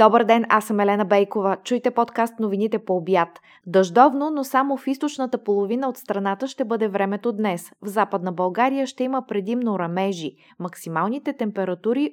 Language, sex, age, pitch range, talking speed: Bulgarian, female, 20-39, 195-245 Hz, 160 wpm